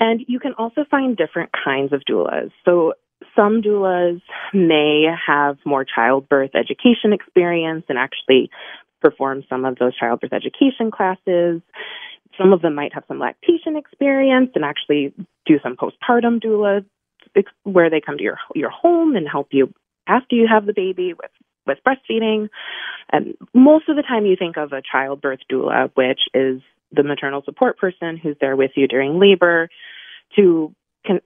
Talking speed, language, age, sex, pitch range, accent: 160 wpm, English, 20-39, female, 145-225 Hz, American